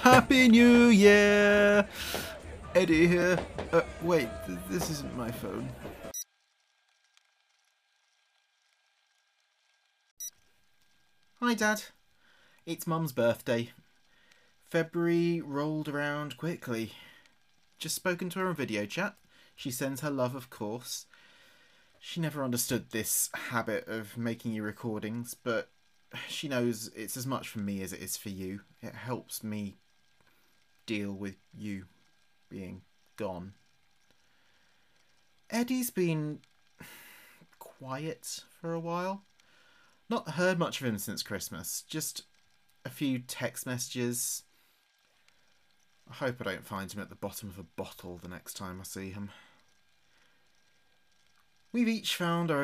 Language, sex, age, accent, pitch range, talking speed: English, male, 30-49, British, 105-170 Hz, 115 wpm